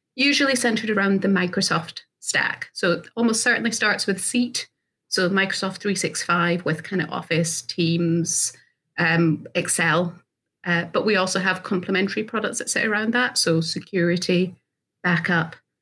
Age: 30-49